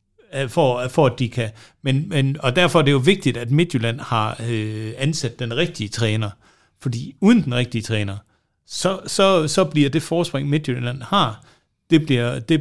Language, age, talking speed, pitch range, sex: Danish, 60-79, 175 wpm, 125-150 Hz, male